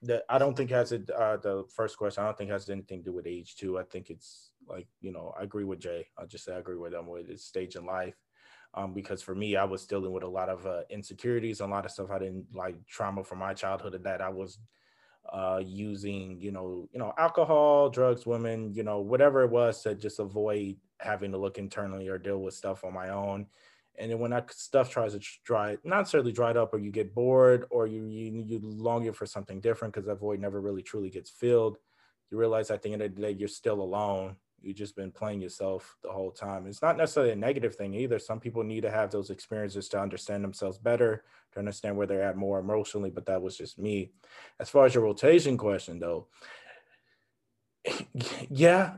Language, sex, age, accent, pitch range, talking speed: English, male, 20-39, American, 95-115 Hz, 230 wpm